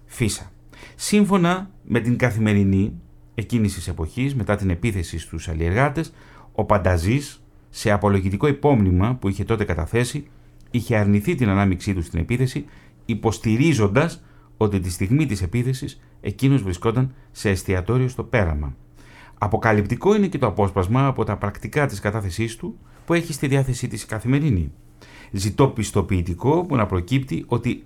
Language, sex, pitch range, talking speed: Greek, male, 95-135 Hz, 140 wpm